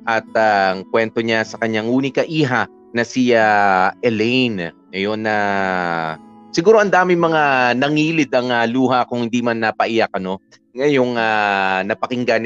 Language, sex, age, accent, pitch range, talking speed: Filipino, male, 30-49, native, 110-130 Hz, 150 wpm